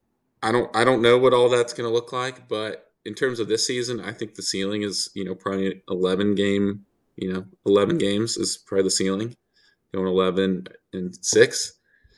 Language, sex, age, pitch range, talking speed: English, male, 20-39, 95-120 Hz, 190 wpm